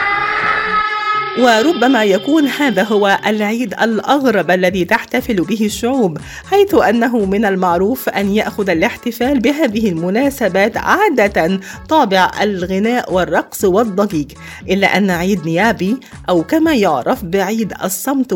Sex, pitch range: female, 185-265 Hz